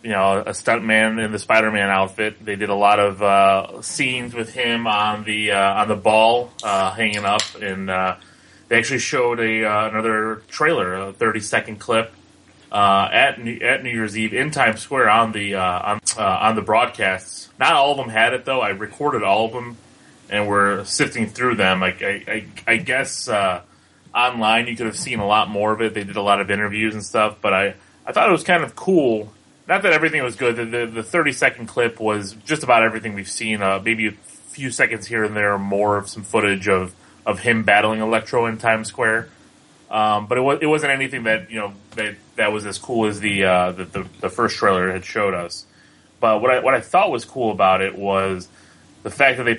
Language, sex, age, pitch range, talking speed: English, male, 20-39, 100-115 Hz, 225 wpm